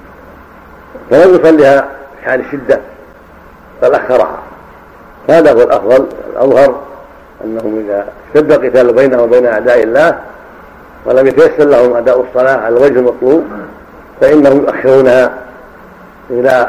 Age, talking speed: 60-79, 105 wpm